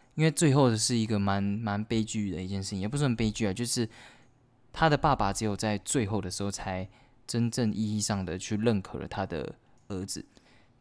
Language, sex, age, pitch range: Chinese, male, 20-39, 95-120 Hz